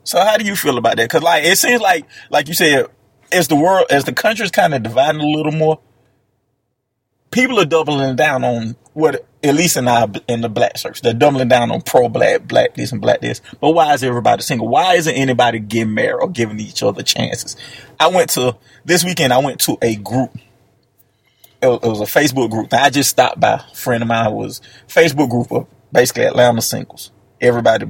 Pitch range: 115-135 Hz